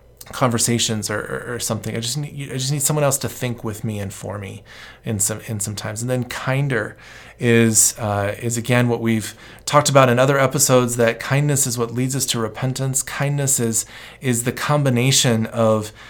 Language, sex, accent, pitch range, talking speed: English, male, American, 110-135 Hz, 200 wpm